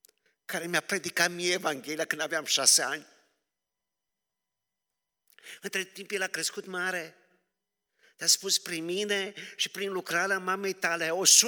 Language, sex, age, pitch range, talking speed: Romanian, male, 50-69, 145-185 Hz, 125 wpm